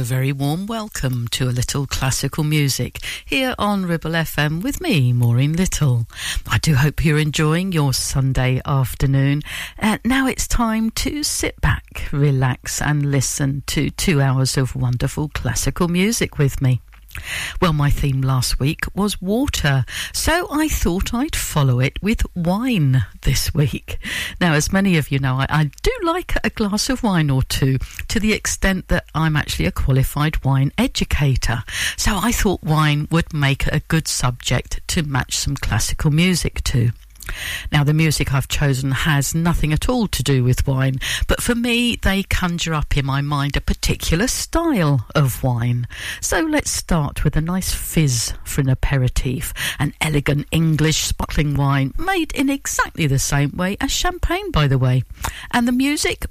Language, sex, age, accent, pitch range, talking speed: English, female, 60-79, British, 130-180 Hz, 170 wpm